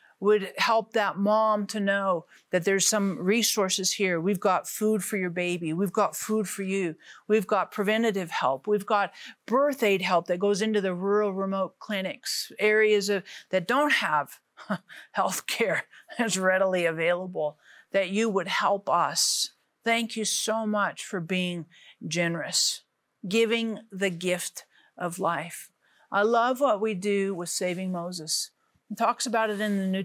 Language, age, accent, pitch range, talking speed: English, 50-69, American, 185-230 Hz, 155 wpm